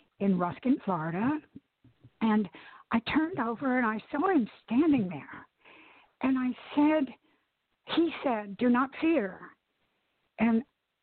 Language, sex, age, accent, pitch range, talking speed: English, female, 60-79, American, 210-280 Hz, 120 wpm